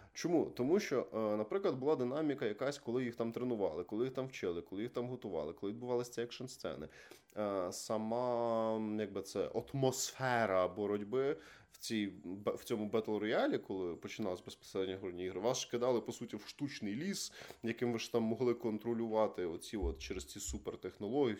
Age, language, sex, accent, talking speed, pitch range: 20-39, Ukrainian, male, native, 155 wpm, 110-145 Hz